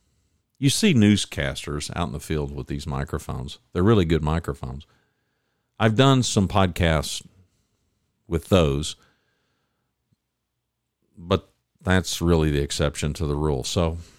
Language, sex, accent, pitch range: English, male, American, 85-115 Hz